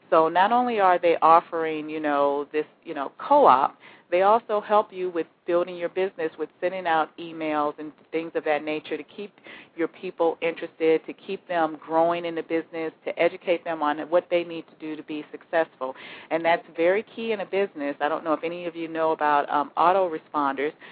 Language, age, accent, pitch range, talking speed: English, 40-59, American, 155-180 Hz, 205 wpm